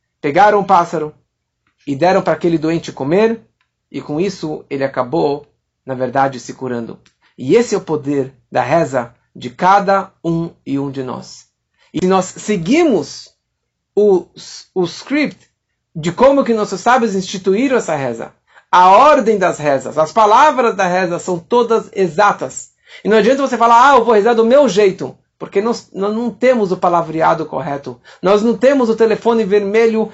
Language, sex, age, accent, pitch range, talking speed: Portuguese, male, 50-69, Brazilian, 165-220 Hz, 165 wpm